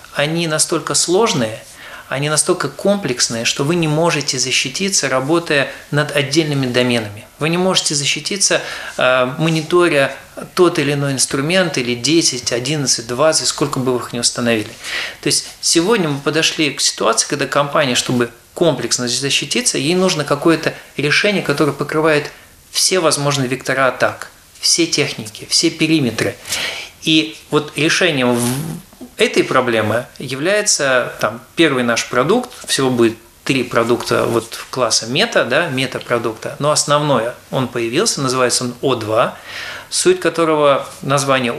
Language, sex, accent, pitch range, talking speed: Russian, male, native, 125-165 Hz, 130 wpm